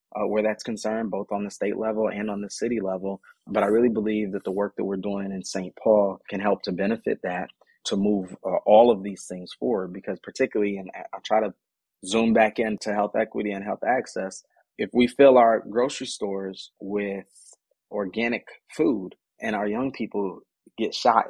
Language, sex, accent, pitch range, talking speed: English, male, American, 95-110 Hz, 195 wpm